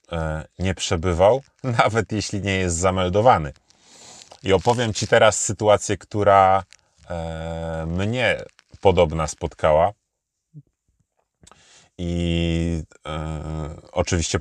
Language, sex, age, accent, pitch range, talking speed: Polish, male, 30-49, native, 80-105 Hz, 75 wpm